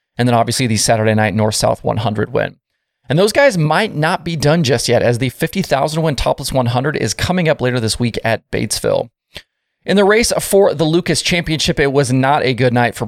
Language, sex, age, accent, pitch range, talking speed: English, male, 20-39, American, 120-155 Hz, 210 wpm